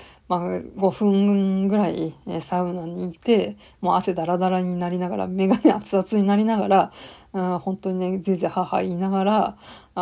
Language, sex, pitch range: Japanese, female, 180-210 Hz